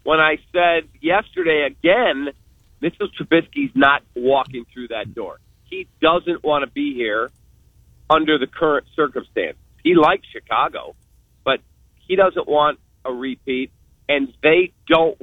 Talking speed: 135 wpm